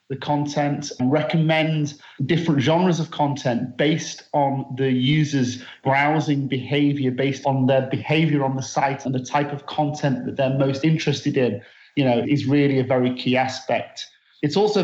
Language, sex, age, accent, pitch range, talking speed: English, male, 40-59, British, 130-150 Hz, 165 wpm